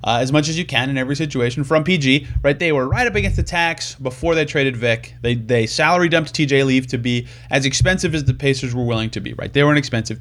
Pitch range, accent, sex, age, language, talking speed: 120-155 Hz, American, male, 30-49, English, 265 wpm